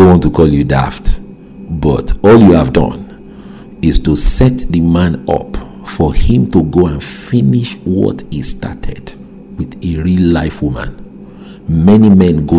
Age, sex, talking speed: 50-69, male, 160 wpm